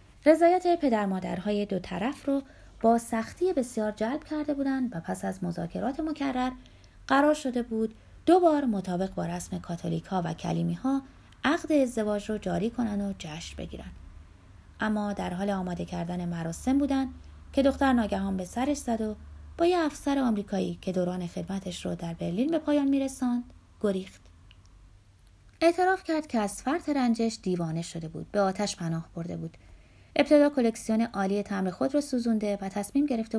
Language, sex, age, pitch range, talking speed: Persian, female, 30-49, 170-260 Hz, 160 wpm